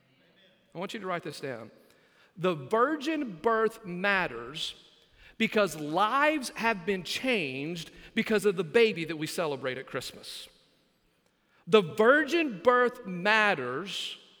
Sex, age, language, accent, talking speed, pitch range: male, 40-59, English, American, 120 wpm, 175-240 Hz